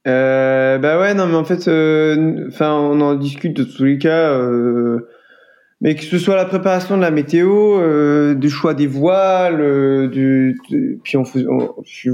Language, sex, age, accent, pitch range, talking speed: French, male, 20-39, French, 125-160 Hz, 185 wpm